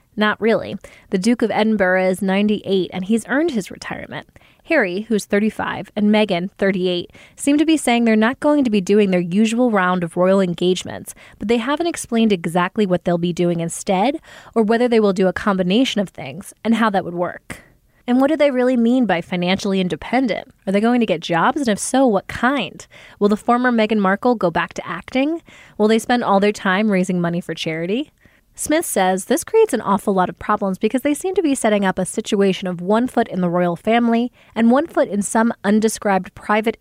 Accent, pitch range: American, 185-235 Hz